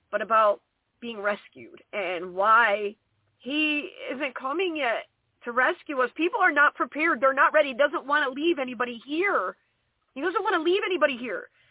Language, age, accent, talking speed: English, 30-49, American, 175 wpm